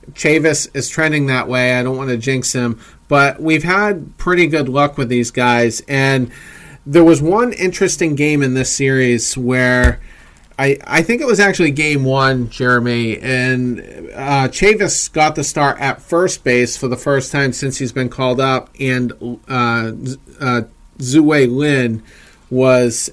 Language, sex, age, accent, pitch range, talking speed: English, male, 40-59, American, 125-150 Hz, 165 wpm